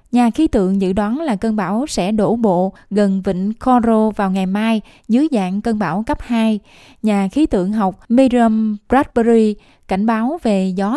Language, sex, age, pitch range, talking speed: Vietnamese, female, 10-29, 200-245 Hz, 180 wpm